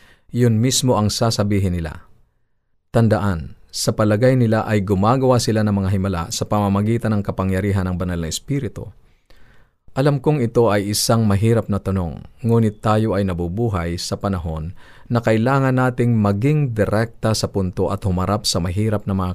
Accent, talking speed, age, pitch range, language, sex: native, 155 wpm, 50-69, 95-120 Hz, Filipino, male